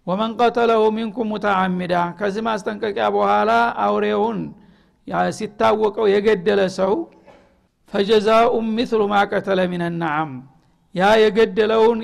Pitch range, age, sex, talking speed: 190-220 Hz, 60-79, male, 100 wpm